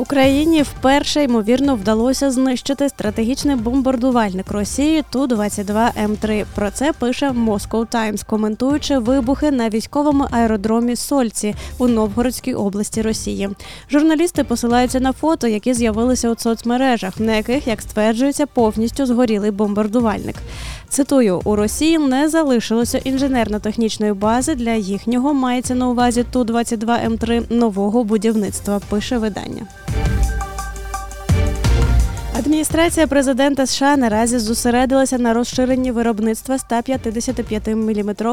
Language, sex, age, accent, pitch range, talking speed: Ukrainian, female, 20-39, native, 215-265 Hz, 100 wpm